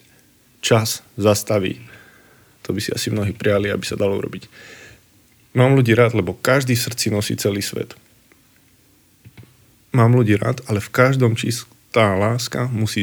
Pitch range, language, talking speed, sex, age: 105-120 Hz, Slovak, 145 wpm, male, 20-39